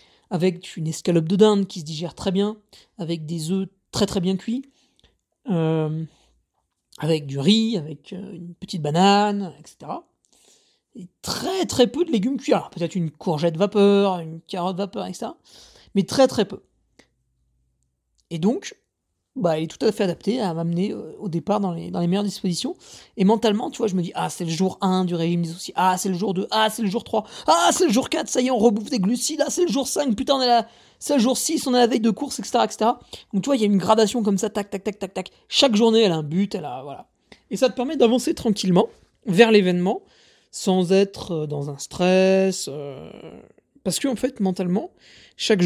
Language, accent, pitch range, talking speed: French, French, 180-235 Hz, 220 wpm